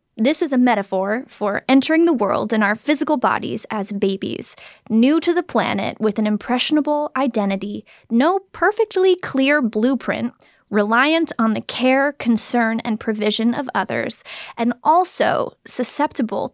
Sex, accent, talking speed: female, American, 140 wpm